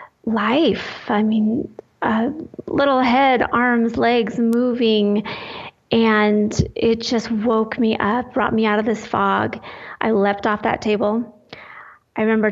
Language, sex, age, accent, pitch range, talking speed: English, female, 30-49, American, 210-240 Hz, 135 wpm